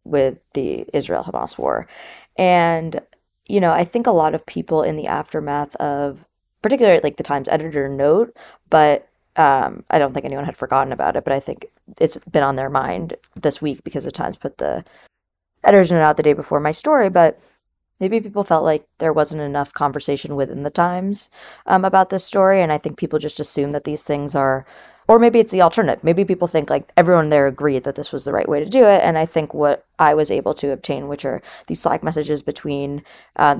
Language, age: English, 20-39